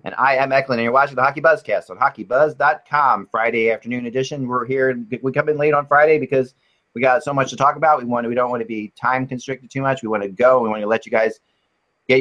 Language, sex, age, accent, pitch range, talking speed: English, male, 30-49, American, 110-135 Hz, 255 wpm